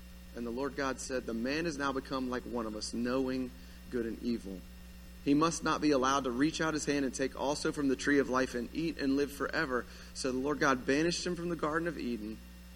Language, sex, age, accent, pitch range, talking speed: English, male, 30-49, American, 105-170 Hz, 245 wpm